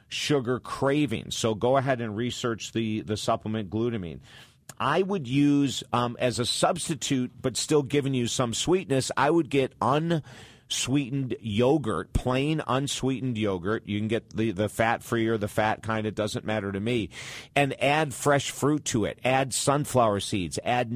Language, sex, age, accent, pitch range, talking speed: English, male, 50-69, American, 115-140 Hz, 165 wpm